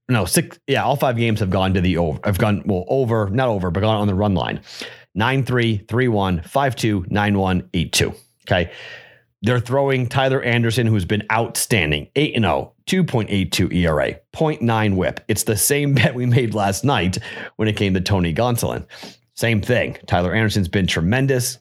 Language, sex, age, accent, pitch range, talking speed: English, male, 40-59, American, 95-125 Hz, 170 wpm